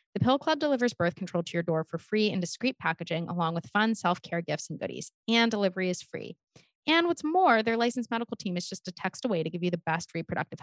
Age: 20-39